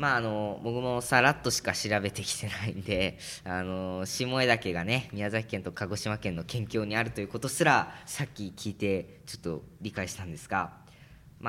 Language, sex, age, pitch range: Japanese, female, 20-39, 90-140 Hz